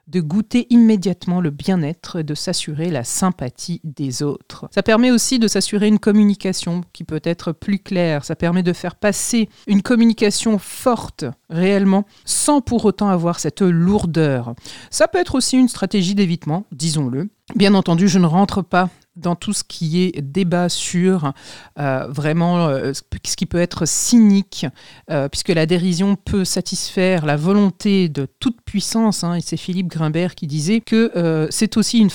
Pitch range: 165-215 Hz